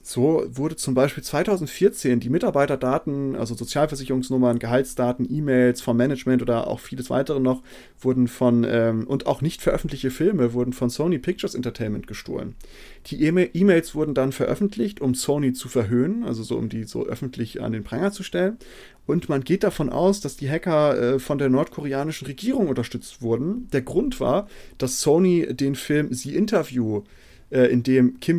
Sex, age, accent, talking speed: male, 30-49, German, 165 wpm